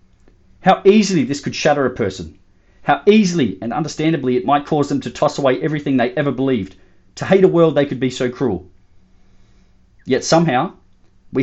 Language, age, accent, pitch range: English, 30-49, Australian, 95-135 Hz